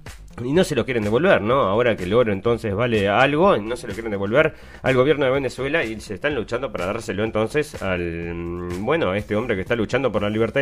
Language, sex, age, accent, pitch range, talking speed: Spanish, male, 30-49, Argentinian, 105-145 Hz, 230 wpm